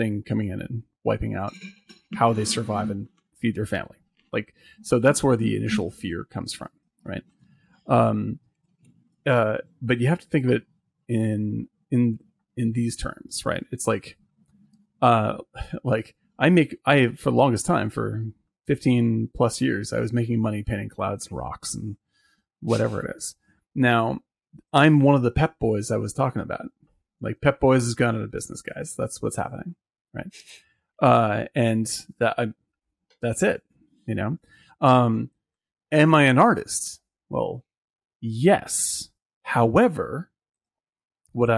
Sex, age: male, 30-49